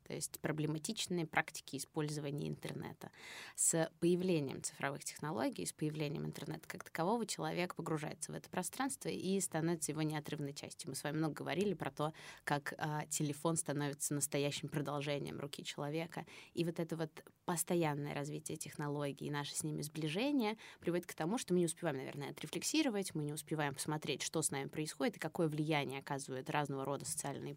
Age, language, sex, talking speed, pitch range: 20-39, Russian, female, 165 wpm, 145-170 Hz